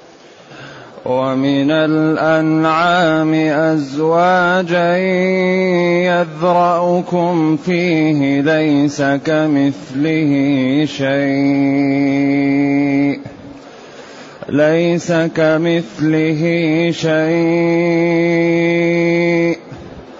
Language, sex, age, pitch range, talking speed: Arabic, male, 30-49, 140-165 Hz, 35 wpm